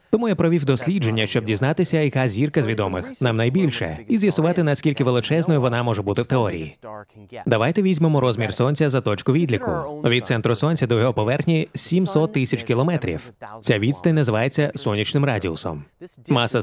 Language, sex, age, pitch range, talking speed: Ukrainian, male, 20-39, 115-155 Hz, 155 wpm